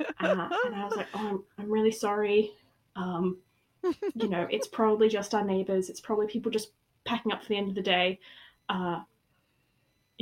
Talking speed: 180 wpm